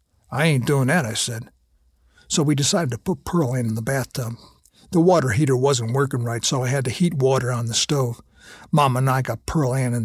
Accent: American